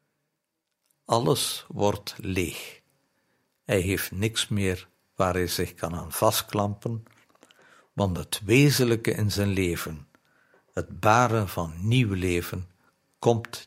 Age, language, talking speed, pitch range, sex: 60-79, Dutch, 110 wpm, 95-135 Hz, male